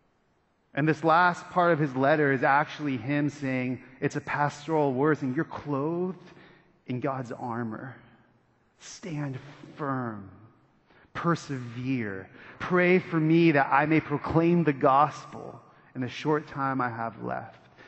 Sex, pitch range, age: male, 125-160 Hz, 30-49